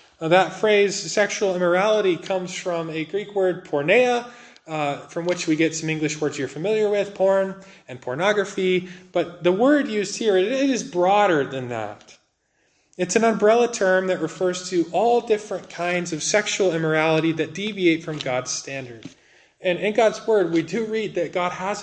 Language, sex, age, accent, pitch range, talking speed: English, male, 20-39, American, 150-195 Hz, 170 wpm